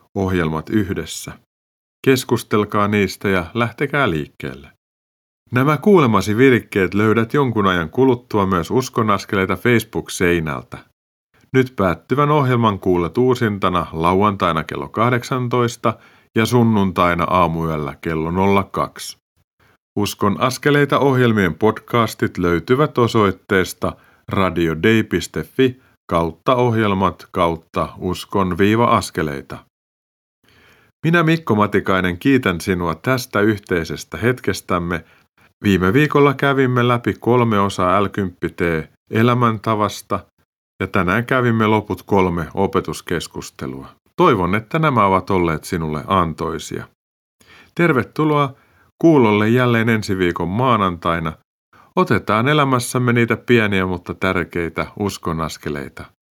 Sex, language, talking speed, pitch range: male, Finnish, 90 wpm, 90-120 Hz